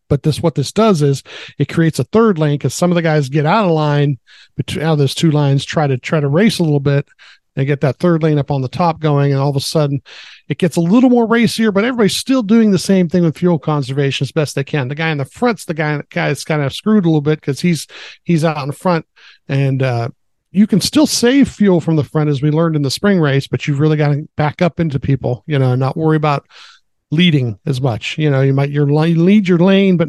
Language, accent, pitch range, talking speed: English, American, 140-175 Hz, 260 wpm